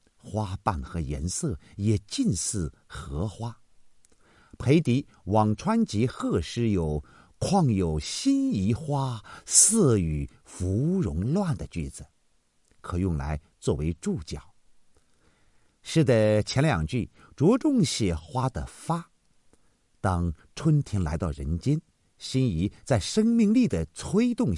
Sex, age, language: male, 50-69, Chinese